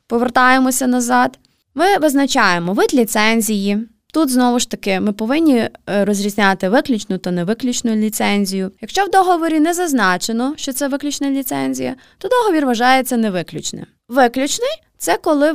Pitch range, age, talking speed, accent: 215-315 Hz, 20-39, 130 wpm, native